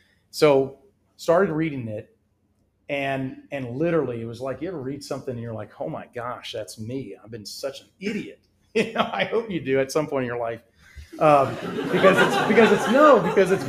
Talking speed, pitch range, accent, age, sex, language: 205 wpm, 105-145 Hz, American, 40-59, male, English